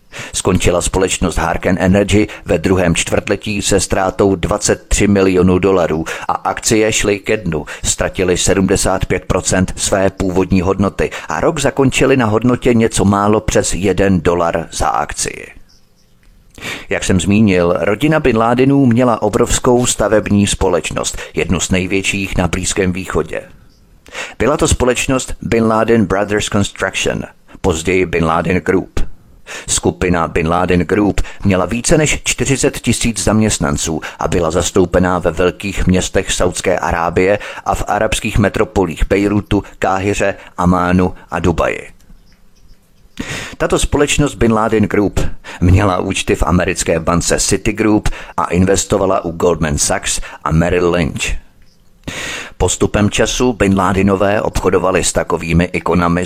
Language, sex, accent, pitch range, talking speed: Czech, male, native, 90-110 Hz, 125 wpm